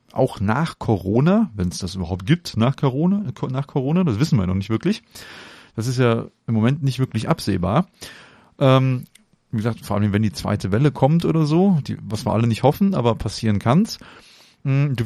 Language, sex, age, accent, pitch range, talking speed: German, male, 30-49, German, 105-130 Hz, 185 wpm